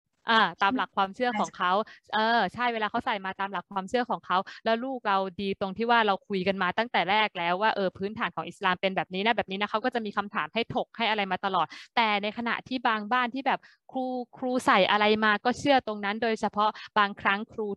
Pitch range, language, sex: 200-255 Hz, Thai, female